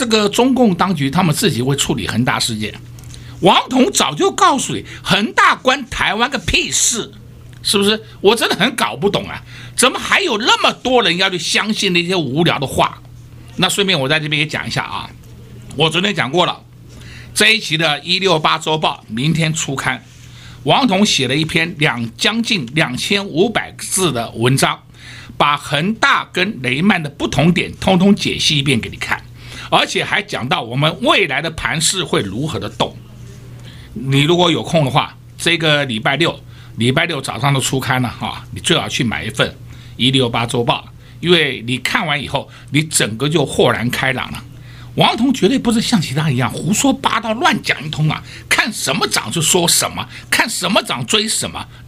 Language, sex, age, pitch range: Chinese, male, 60-79, 125-190 Hz